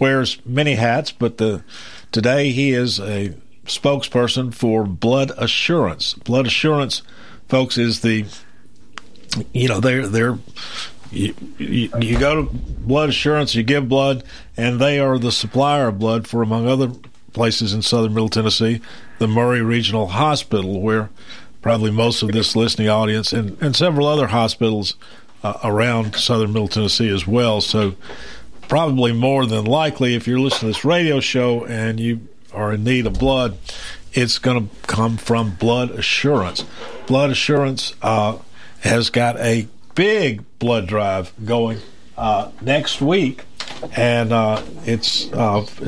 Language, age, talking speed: English, 50-69, 145 wpm